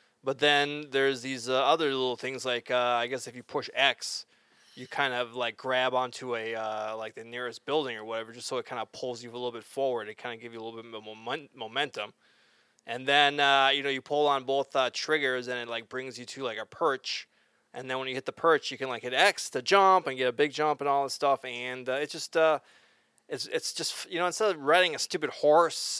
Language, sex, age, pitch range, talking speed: English, male, 20-39, 120-150 Hz, 255 wpm